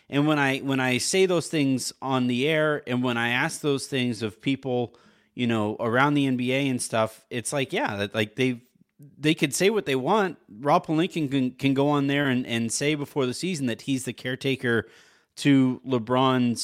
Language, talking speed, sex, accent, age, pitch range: English, 200 wpm, male, American, 30-49, 115-145 Hz